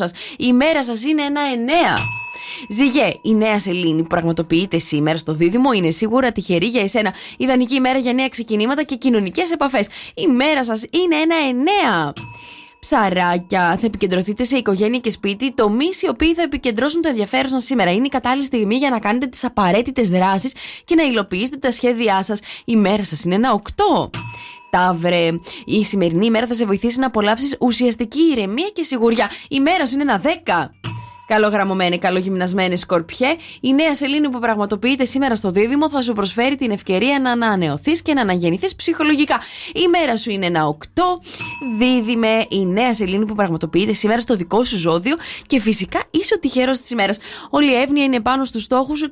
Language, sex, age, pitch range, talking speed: English, female, 20-39, 200-275 Hz, 180 wpm